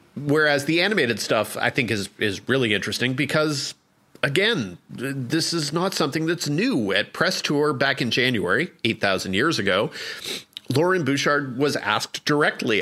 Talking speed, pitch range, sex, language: 150 wpm, 110-135 Hz, male, English